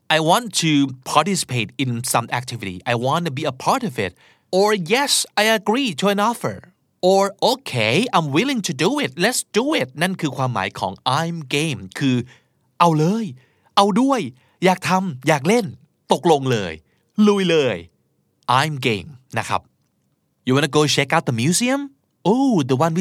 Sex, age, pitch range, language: male, 30-49, 125-190 Hz, Thai